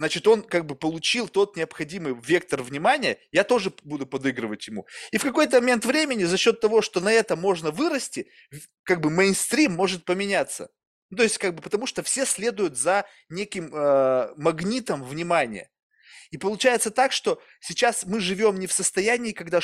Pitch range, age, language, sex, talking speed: 155-220 Hz, 20-39, Russian, male, 175 wpm